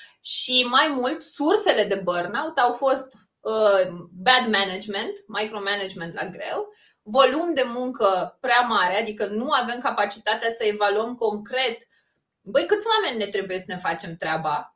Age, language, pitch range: 20-39, Romanian, 205-295 Hz